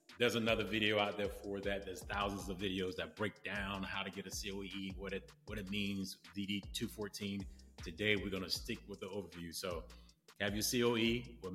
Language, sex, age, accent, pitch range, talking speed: English, male, 30-49, American, 90-110 Hz, 190 wpm